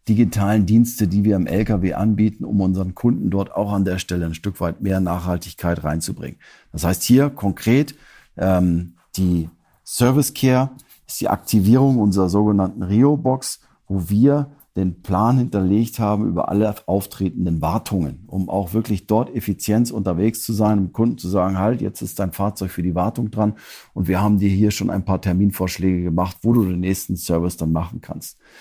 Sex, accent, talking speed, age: male, German, 175 wpm, 50-69